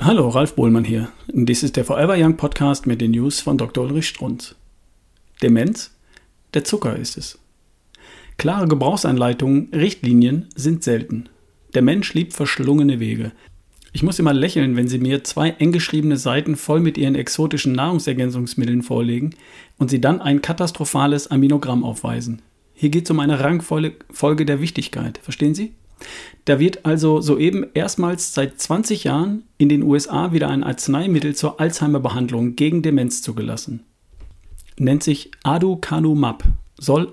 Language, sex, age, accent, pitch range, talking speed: German, male, 40-59, German, 125-160 Hz, 145 wpm